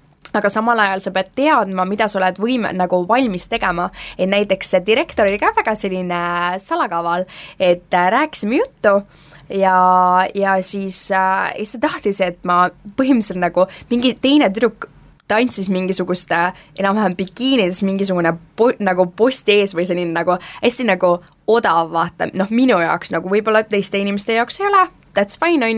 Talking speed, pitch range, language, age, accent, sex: 160 wpm, 175-215 Hz, English, 20-39, Finnish, female